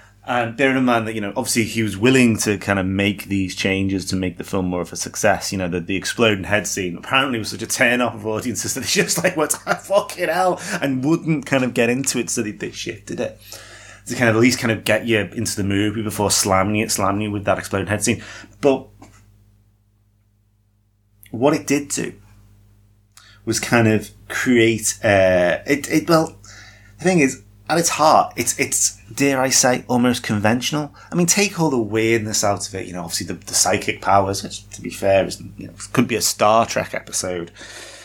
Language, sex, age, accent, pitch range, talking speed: English, male, 30-49, British, 100-120 Hz, 220 wpm